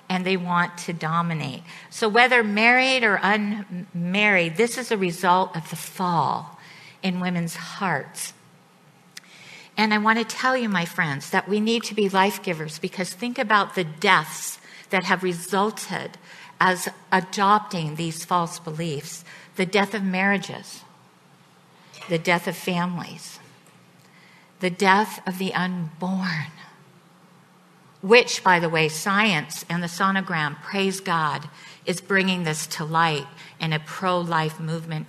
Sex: female